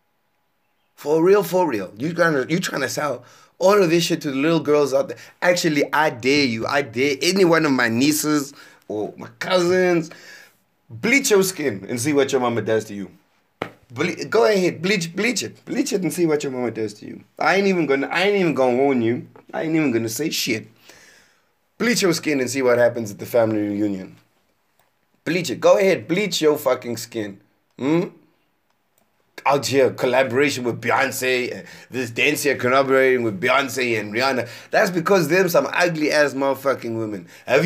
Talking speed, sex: 190 wpm, male